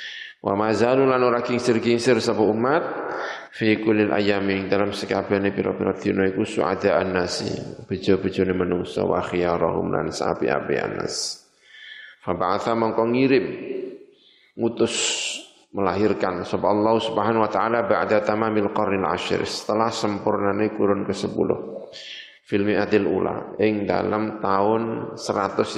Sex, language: male, Indonesian